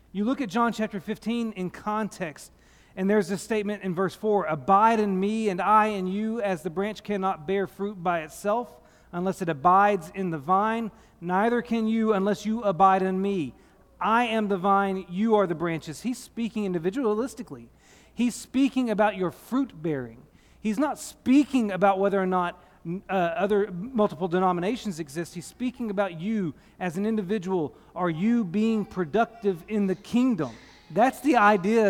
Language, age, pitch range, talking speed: English, 40-59, 185-225 Hz, 170 wpm